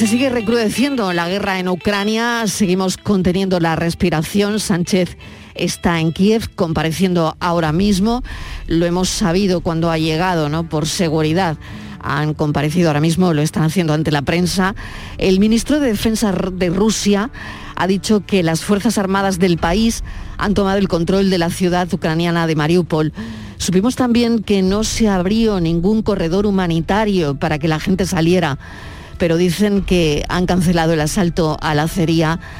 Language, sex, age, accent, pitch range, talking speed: Spanish, female, 40-59, Spanish, 165-205 Hz, 155 wpm